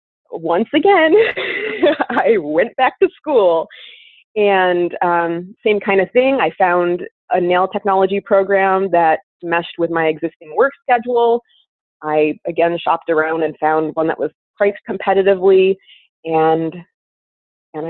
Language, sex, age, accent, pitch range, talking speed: English, female, 30-49, American, 170-210 Hz, 130 wpm